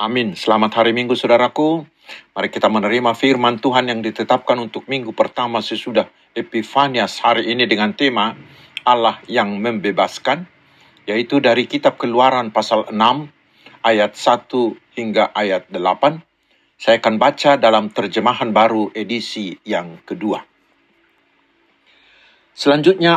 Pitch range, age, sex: 115-150 Hz, 50-69, male